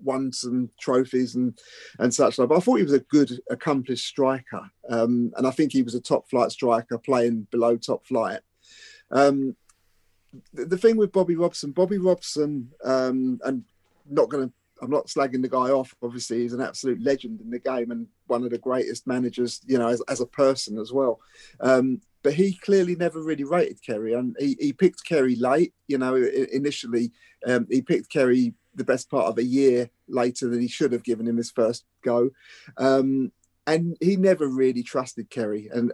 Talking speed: 190 wpm